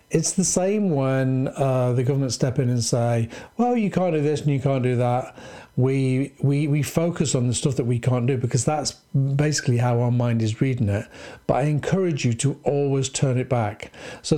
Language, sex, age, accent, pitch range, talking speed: English, male, 50-69, British, 125-150 Hz, 215 wpm